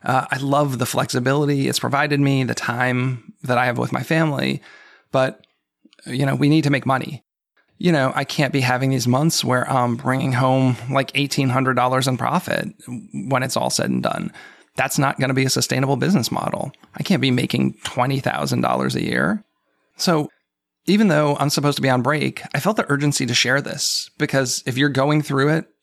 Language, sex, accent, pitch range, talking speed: English, male, American, 125-140 Hz, 195 wpm